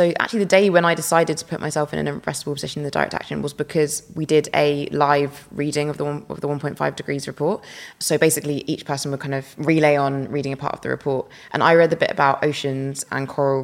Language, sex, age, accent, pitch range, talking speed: English, female, 20-39, British, 140-160 Hz, 250 wpm